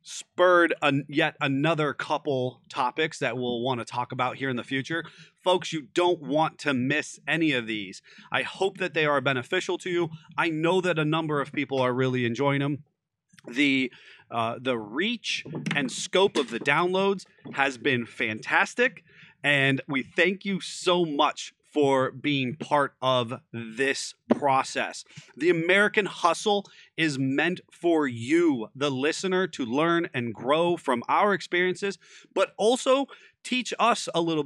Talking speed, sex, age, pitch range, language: 155 wpm, male, 30-49, 135-190 Hz, English